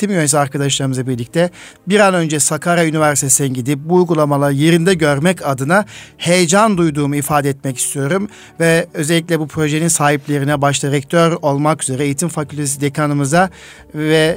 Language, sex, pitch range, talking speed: Turkish, male, 145-180 Hz, 135 wpm